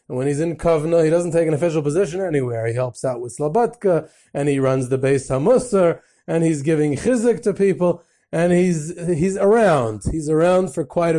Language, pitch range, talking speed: English, 135-175 Hz, 195 wpm